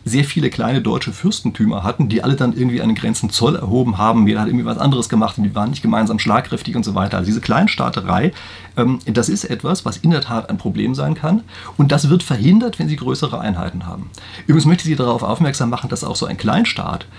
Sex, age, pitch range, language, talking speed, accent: male, 40-59, 110-155 Hz, German, 225 wpm, German